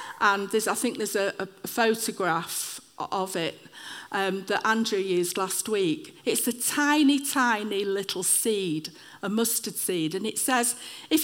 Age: 50-69